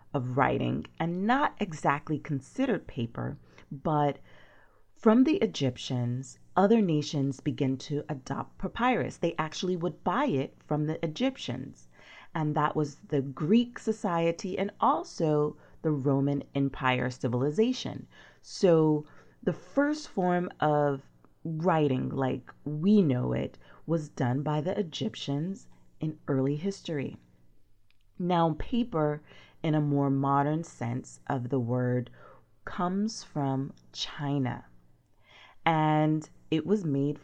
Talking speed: 115 wpm